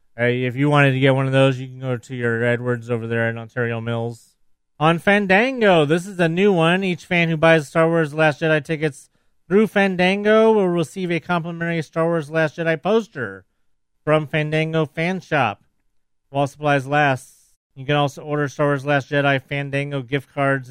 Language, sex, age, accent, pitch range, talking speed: English, male, 30-49, American, 130-160 Hz, 195 wpm